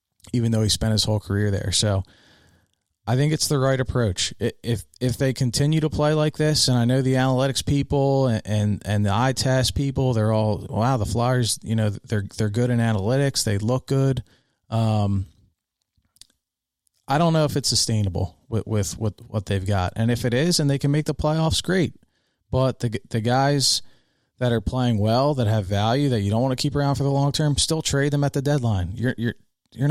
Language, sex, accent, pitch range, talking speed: English, male, American, 105-130 Hz, 215 wpm